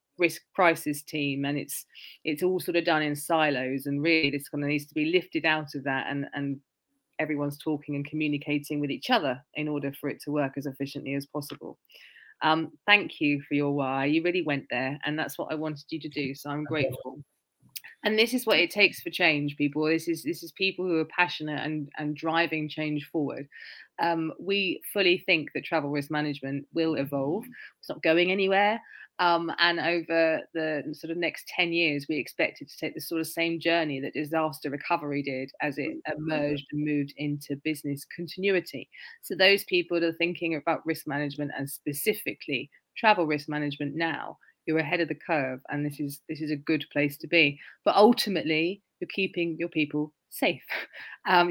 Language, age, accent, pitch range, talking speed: English, 20-39, British, 145-170 Hz, 195 wpm